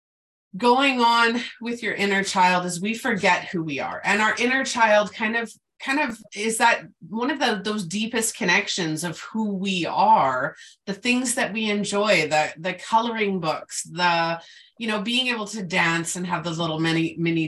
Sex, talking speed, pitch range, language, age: female, 185 wpm, 170-225 Hz, English, 30-49